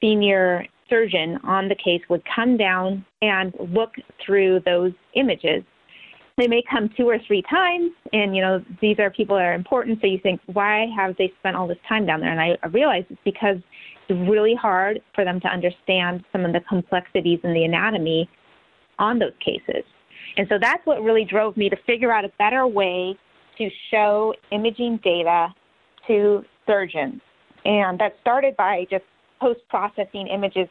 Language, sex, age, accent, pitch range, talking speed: English, female, 30-49, American, 185-225 Hz, 175 wpm